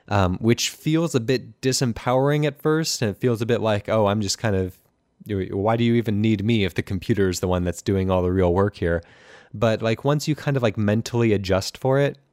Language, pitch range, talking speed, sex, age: English, 95-120 Hz, 235 wpm, male, 20-39